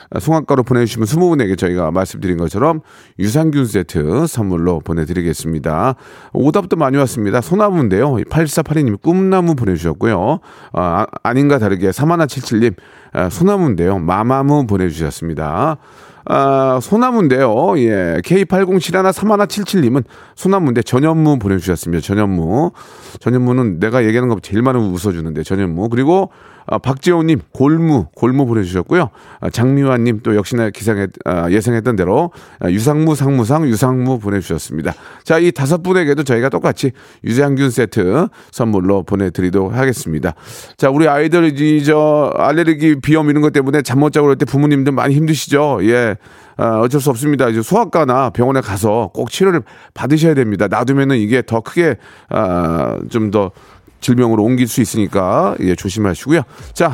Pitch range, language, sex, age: 100-150 Hz, Korean, male, 40-59